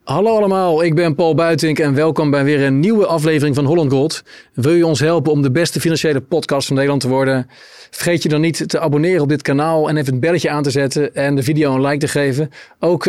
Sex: male